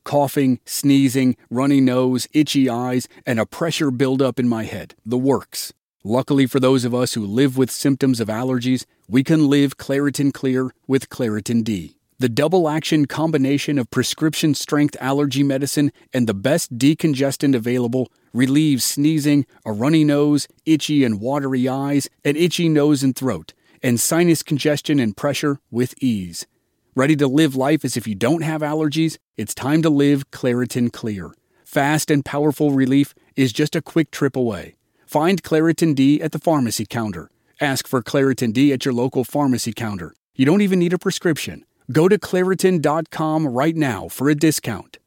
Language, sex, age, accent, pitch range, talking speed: English, male, 40-59, American, 120-150 Hz, 165 wpm